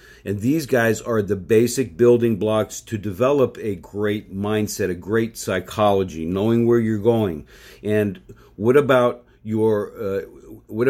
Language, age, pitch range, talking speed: English, 50-69, 100-120 Hz, 145 wpm